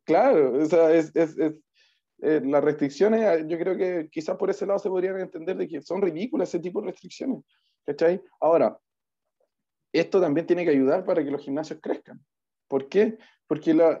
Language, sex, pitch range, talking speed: Spanish, male, 150-195 Hz, 180 wpm